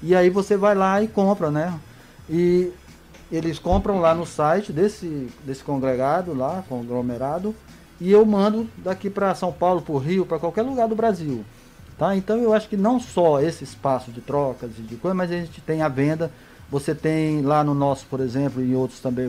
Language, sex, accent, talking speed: Portuguese, male, Brazilian, 200 wpm